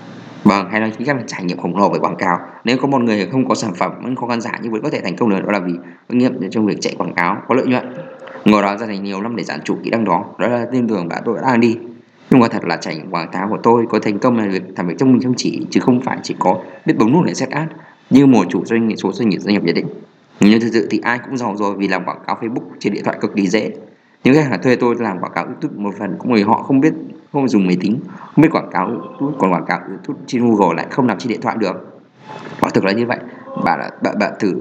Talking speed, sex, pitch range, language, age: 290 wpm, male, 100-120 Hz, Vietnamese, 20-39